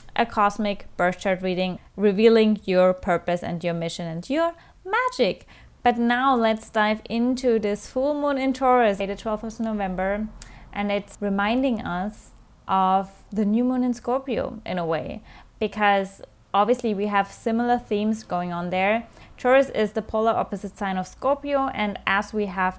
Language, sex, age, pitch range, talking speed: English, female, 20-39, 195-245 Hz, 165 wpm